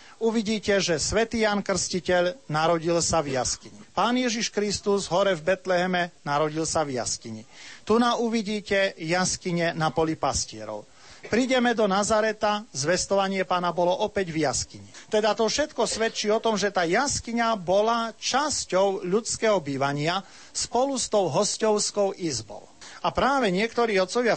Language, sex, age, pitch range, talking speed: Slovak, male, 40-59, 165-220 Hz, 140 wpm